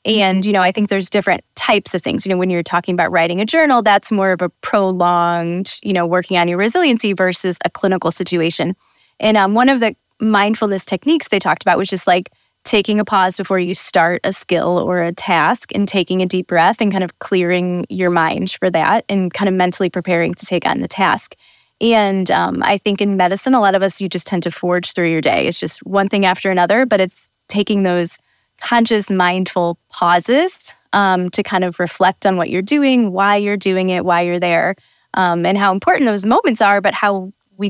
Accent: American